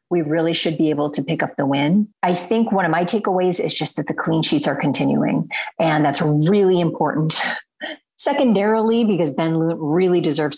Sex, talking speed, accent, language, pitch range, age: female, 185 wpm, American, English, 155-185 Hz, 30-49